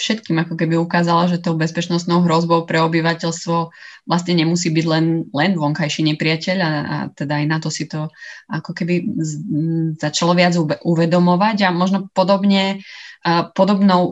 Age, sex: 20-39, female